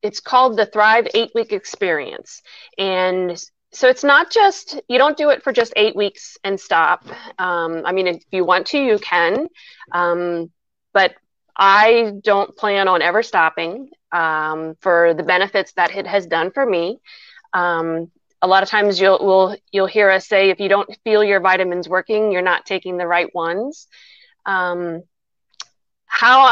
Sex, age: female, 30-49